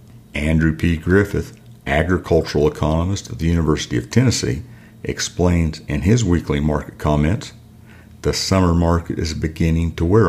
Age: 50-69